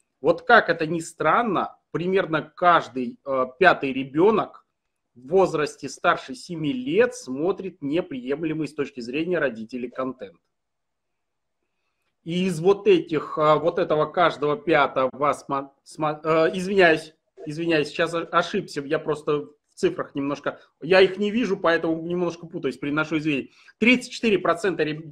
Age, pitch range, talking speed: 30-49, 150-190 Hz, 120 wpm